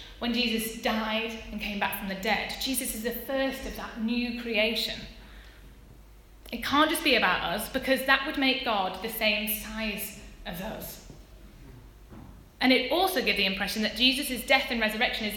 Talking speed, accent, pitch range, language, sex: 175 wpm, British, 220-275 Hz, English, female